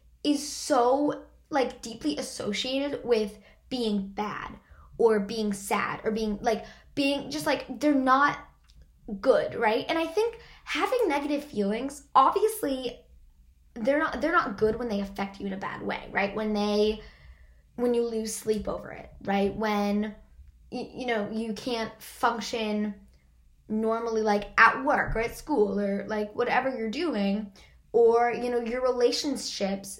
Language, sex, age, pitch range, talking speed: English, female, 10-29, 210-260 Hz, 150 wpm